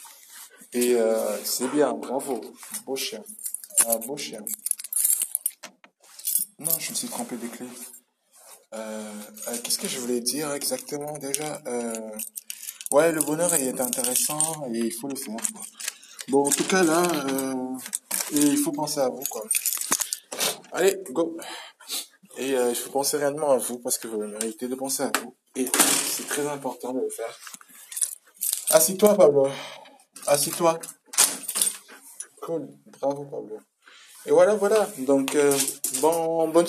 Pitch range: 120-150 Hz